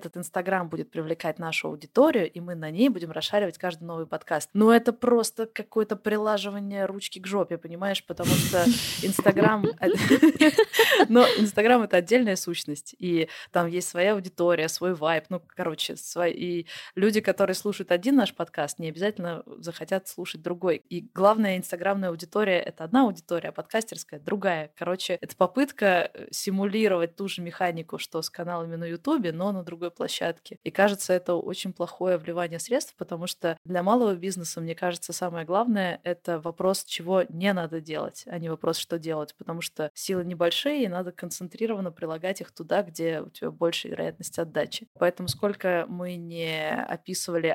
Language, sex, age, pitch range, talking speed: Russian, female, 20-39, 170-200 Hz, 160 wpm